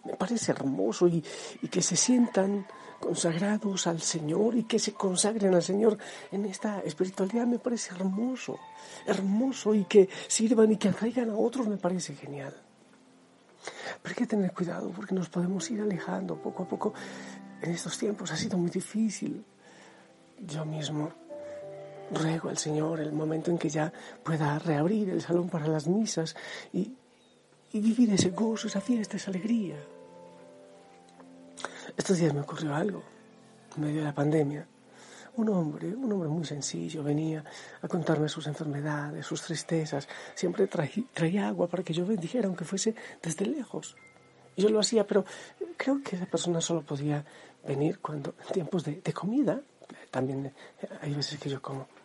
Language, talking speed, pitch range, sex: Spanish, 160 wpm, 155-215 Hz, male